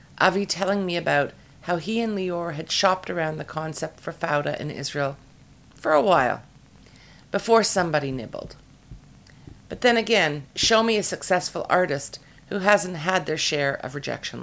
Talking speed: 160 wpm